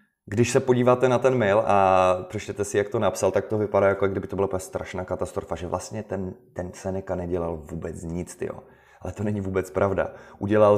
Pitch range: 95-120 Hz